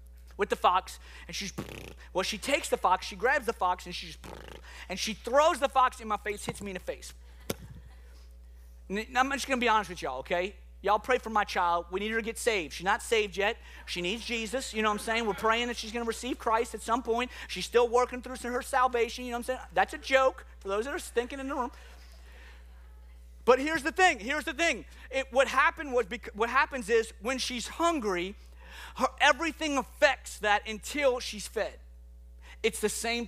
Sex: male